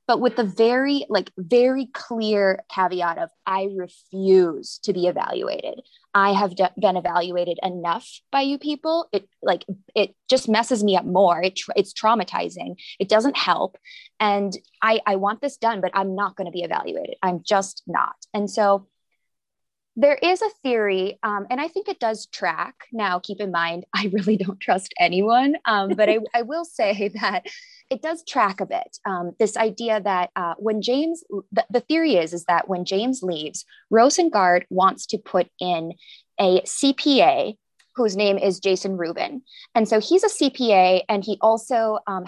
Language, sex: English, female